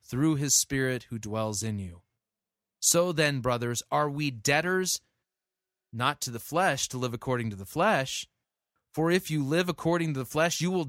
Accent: American